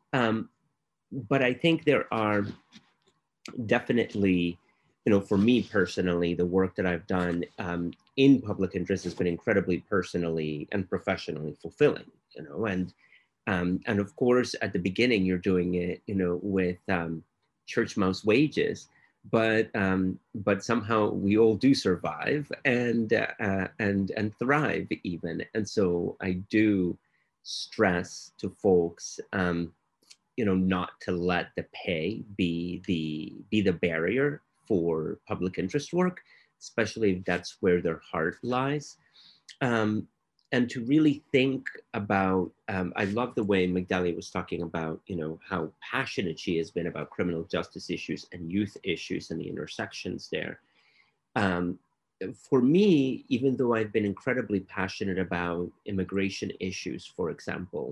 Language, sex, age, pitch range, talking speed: English, male, 30-49, 90-110 Hz, 145 wpm